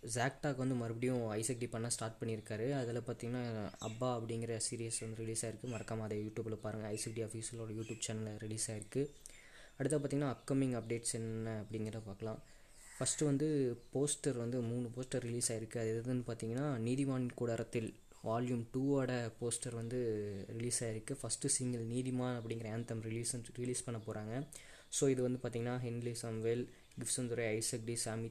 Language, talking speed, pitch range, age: Tamil, 150 wpm, 110-125 Hz, 20-39